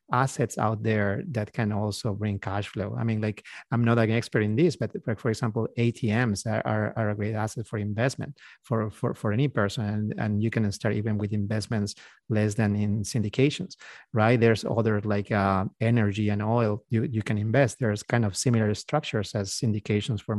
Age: 30-49